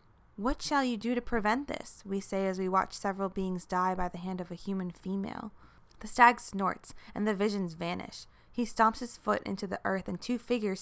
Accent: American